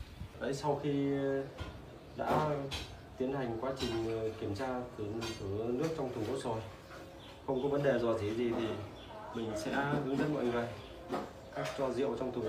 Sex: male